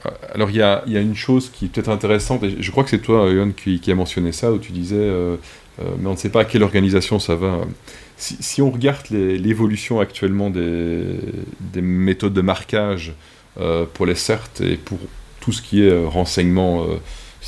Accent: French